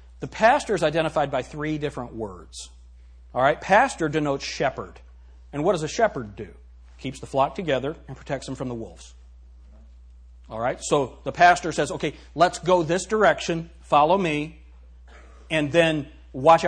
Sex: male